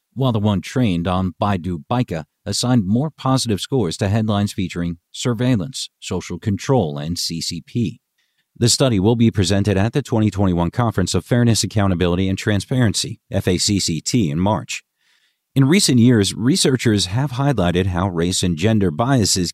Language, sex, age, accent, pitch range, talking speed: English, male, 50-69, American, 90-120 Hz, 140 wpm